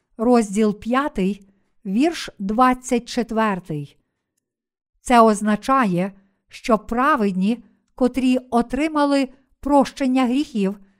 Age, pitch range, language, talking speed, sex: 50-69, 210-260 Hz, Ukrainian, 65 wpm, female